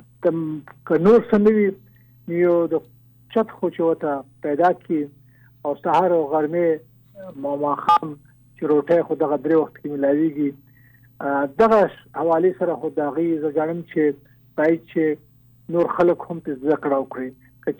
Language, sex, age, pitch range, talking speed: Urdu, male, 50-69, 140-180 Hz, 130 wpm